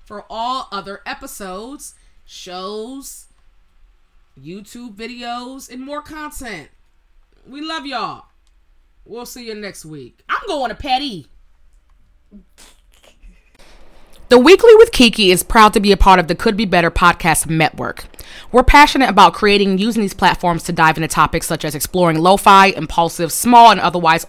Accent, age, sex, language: American, 20-39, female, English